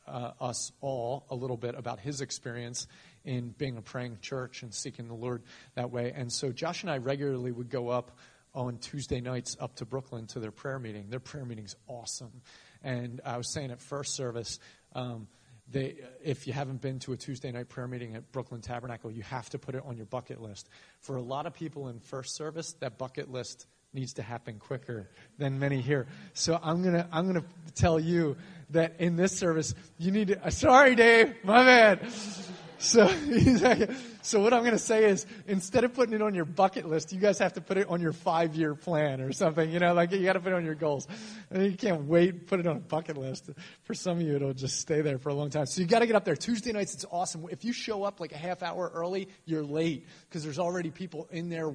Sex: male